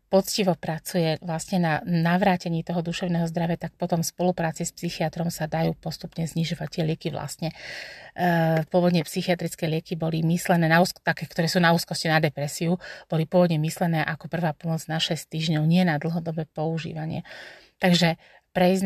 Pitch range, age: 165-180 Hz, 30-49